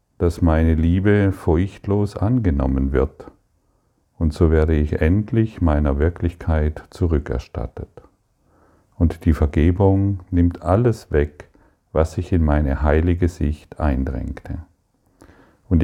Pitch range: 75-90 Hz